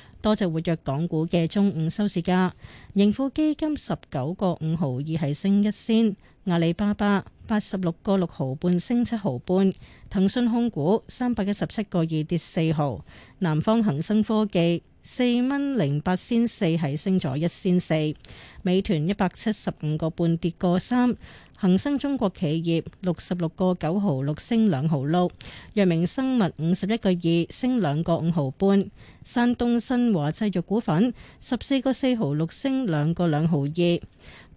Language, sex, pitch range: Chinese, female, 165-220 Hz